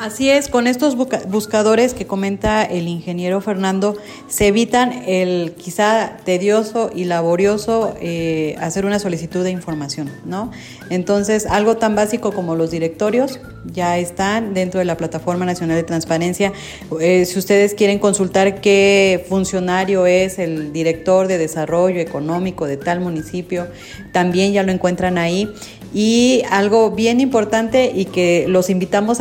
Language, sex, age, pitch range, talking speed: Spanish, female, 30-49, 175-215 Hz, 140 wpm